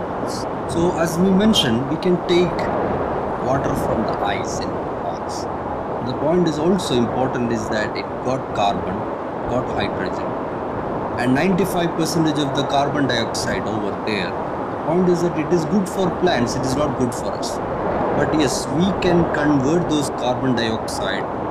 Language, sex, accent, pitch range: English, male, Indian, 130-180 Hz